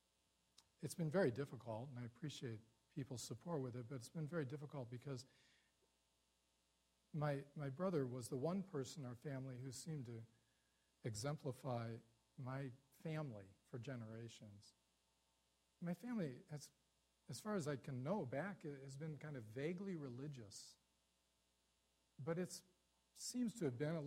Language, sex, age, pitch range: English, male, 40-59, 120-155 Hz